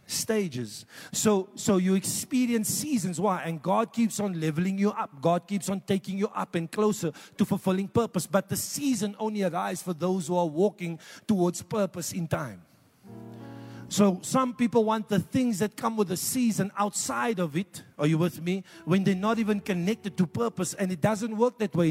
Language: English